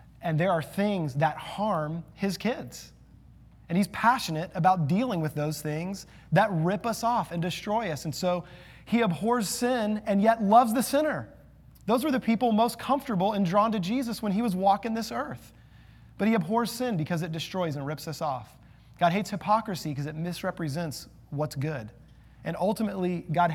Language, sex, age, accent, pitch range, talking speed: English, male, 30-49, American, 150-210 Hz, 180 wpm